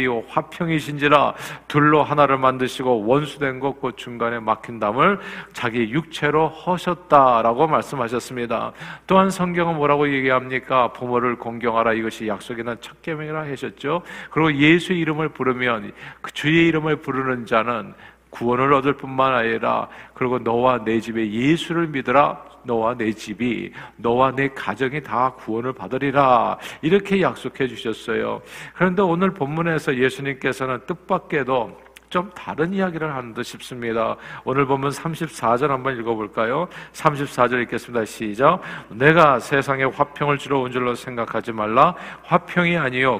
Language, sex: Korean, male